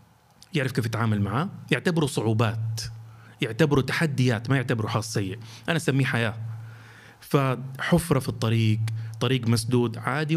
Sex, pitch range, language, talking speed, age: male, 115-160 Hz, Arabic, 120 wpm, 30-49